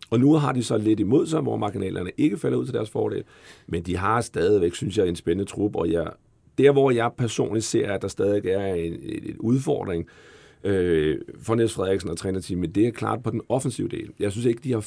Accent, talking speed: native, 235 wpm